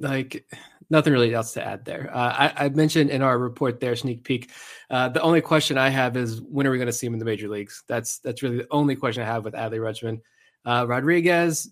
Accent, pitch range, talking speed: American, 120-145 Hz, 245 wpm